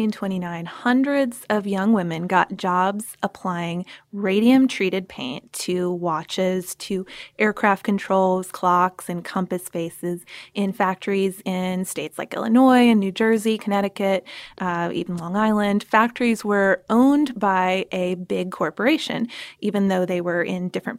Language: English